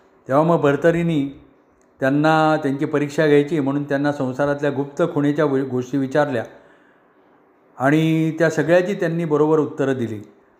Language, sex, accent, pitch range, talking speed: Marathi, male, native, 135-155 Hz, 125 wpm